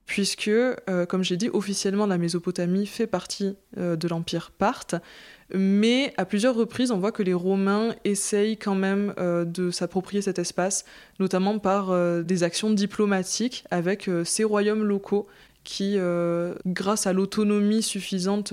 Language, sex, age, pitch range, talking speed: French, female, 20-39, 180-215 Hz, 155 wpm